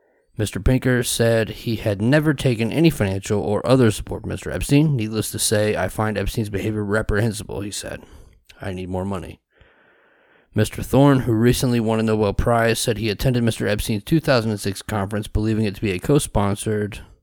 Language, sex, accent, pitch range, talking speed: English, male, American, 95-115 Hz, 175 wpm